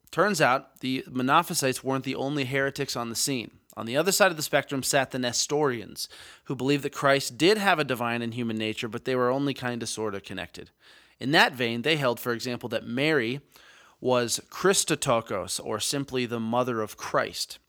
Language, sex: English, male